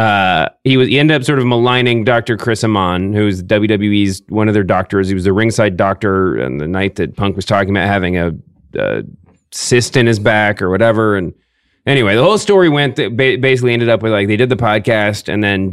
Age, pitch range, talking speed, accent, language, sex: 30-49, 100-135 Hz, 220 wpm, American, English, male